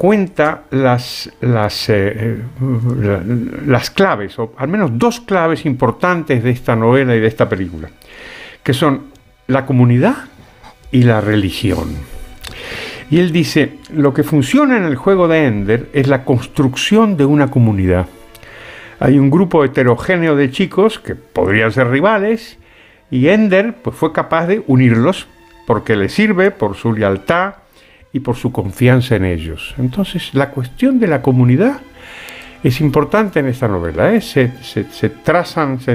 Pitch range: 115-175 Hz